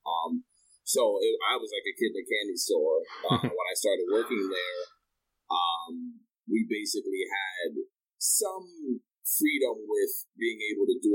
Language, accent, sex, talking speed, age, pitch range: English, American, male, 155 wpm, 30-49, 315-465 Hz